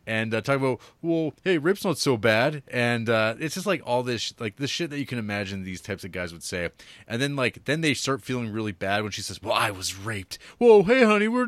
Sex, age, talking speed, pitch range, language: male, 30-49, 270 wpm, 95-130 Hz, English